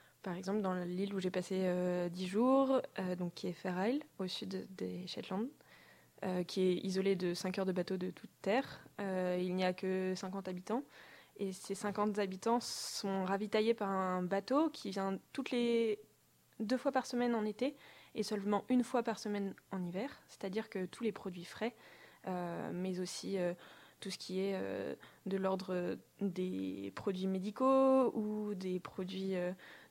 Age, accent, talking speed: 20-39, French, 180 wpm